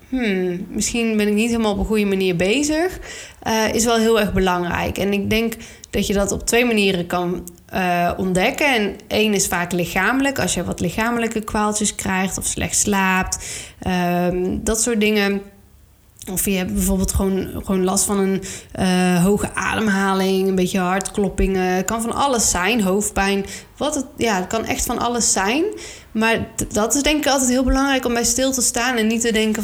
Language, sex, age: Dutch, female, 20-39